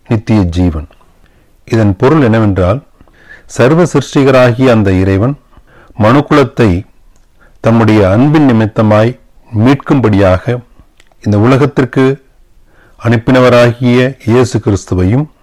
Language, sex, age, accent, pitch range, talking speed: Tamil, male, 40-59, native, 100-130 Hz, 70 wpm